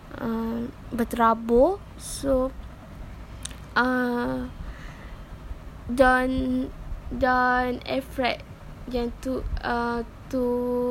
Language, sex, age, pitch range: English, female, 20-39, 230-270 Hz